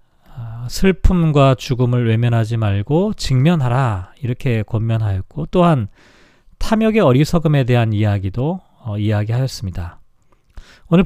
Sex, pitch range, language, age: male, 115-165 Hz, Korean, 40-59